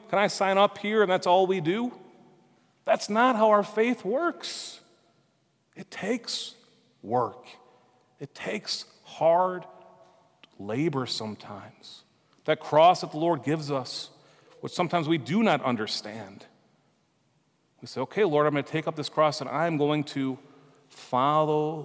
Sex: male